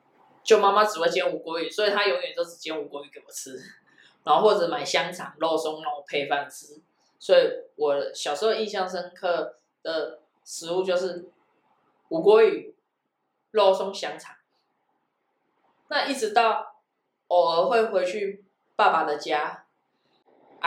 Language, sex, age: Chinese, female, 20-39